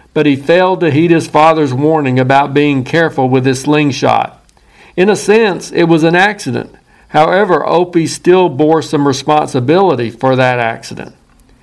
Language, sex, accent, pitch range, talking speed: English, male, American, 140-170 Hz, 155 wpm